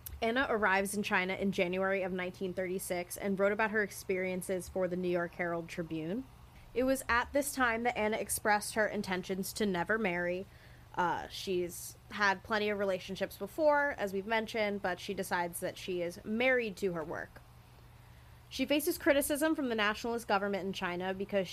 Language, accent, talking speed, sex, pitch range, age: English, American, 175 wpm, female, 185-235 Hz, 20-39